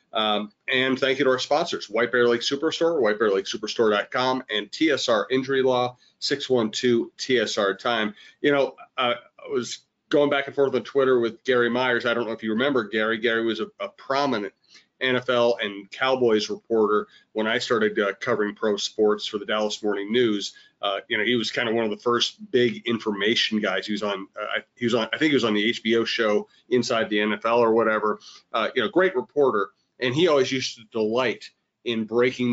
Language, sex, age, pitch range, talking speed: English, male, 30-49, 110-130 Hz, 200 wpm